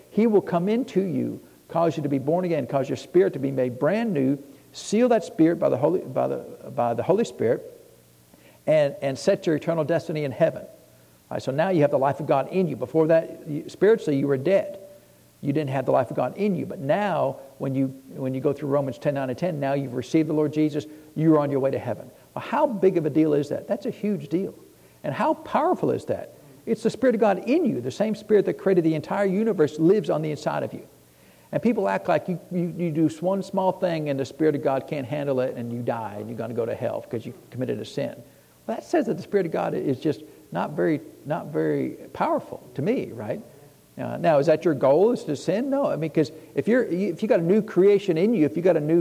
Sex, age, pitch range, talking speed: male, 60-79, 145-195 Hz, 255 wpm